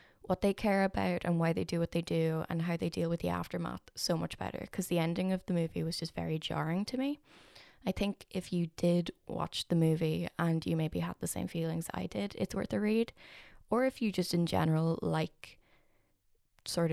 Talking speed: 220 wpm